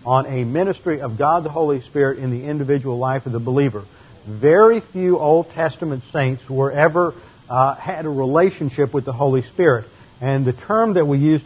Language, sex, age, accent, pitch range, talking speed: English, male, 50-69, American, 125-155 Hz, 190 wpm